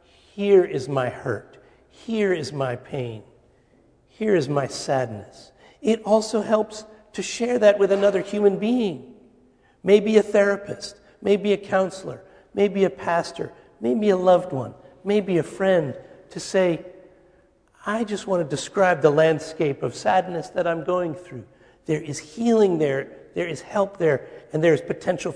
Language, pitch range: English, 135-190 Hz